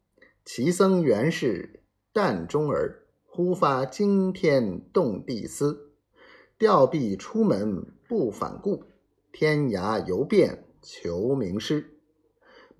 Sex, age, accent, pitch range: male, 50-69, native, 145-225 Hz